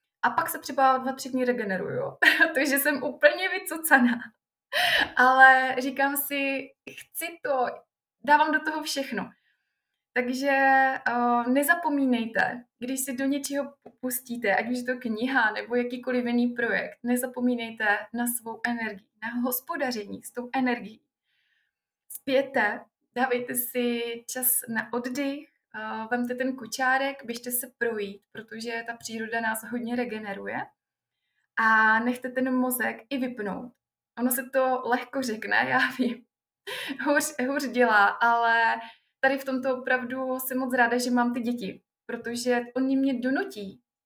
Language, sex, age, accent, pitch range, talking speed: Czech, female, 20-39, native, 235-275 Hz, 130 wpm